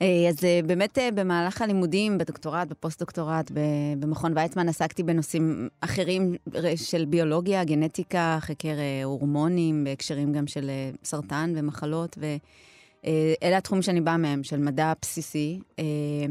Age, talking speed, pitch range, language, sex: 30-49, 110 wpm, 140-165 Hz, Hebrew, female